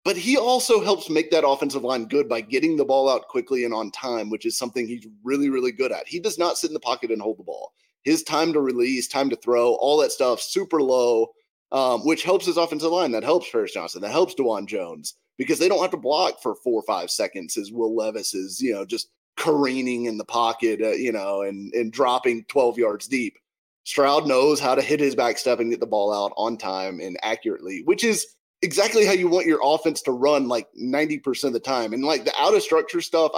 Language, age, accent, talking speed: English, 30-49, American, 240 wpm